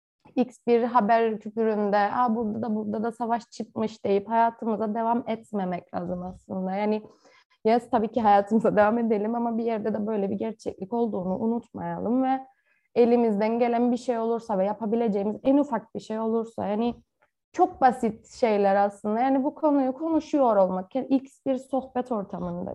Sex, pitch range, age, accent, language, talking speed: female, 215-265 Hz, 30-49, native, Turkish, 155 wpm